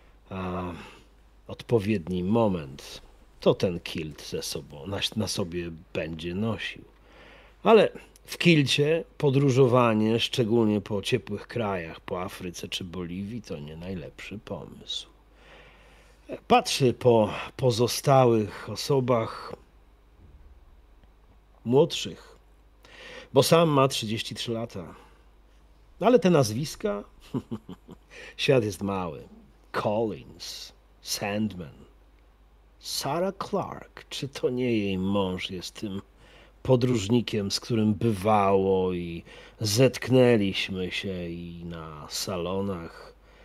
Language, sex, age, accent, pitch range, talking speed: Polish, male, 40-59, native, 85-120 Hz, 95 wpm